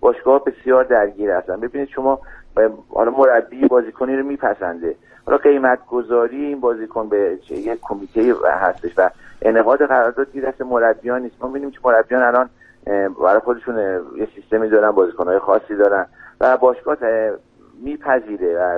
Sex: male